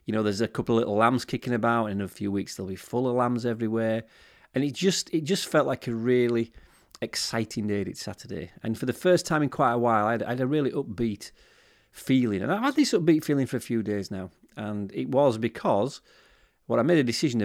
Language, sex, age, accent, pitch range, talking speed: English, male, 30-49, British, 105-130 Hz, 245 wpm